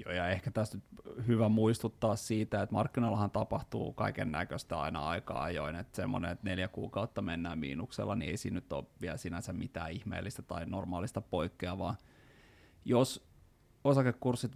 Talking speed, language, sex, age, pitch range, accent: 145 wpm, Finnish, male, 30-49, 100-125 Hz, native